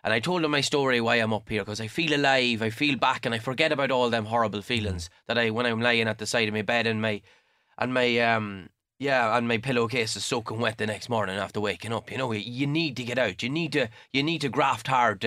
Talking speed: 275 wpm